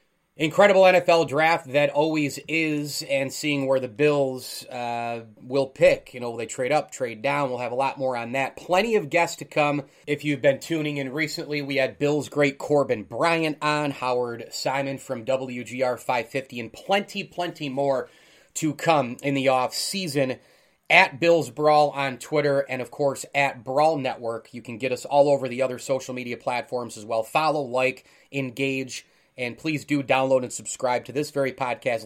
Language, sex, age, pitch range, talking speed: English, male, 30-49, 130-160 Hz, 185 wpm